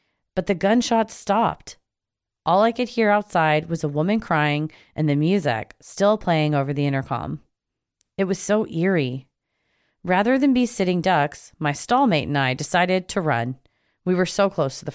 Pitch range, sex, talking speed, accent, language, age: 150-210 Hz, female, 175 wpm, American, English, 30-49